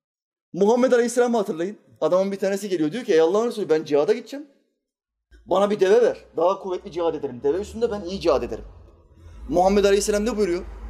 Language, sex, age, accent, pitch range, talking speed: Turkish, male, 30-49, native, 150-235 Hz, 180 wpm